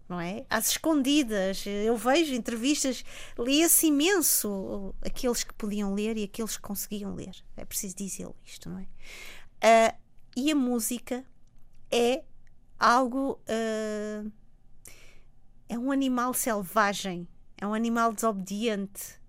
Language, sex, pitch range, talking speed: Portuguese, female, 210-250 Hz, 120 wpm